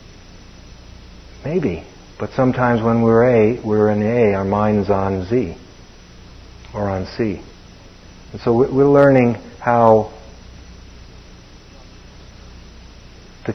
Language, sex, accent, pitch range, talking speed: English, male, American, 95-115 Hz, 95 wpm